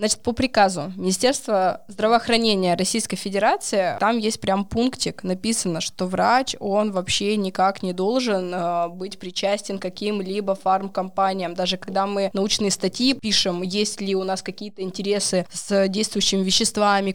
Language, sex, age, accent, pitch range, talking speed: Russian, female, 20-39, native, 190-225 Hz, 140 wpm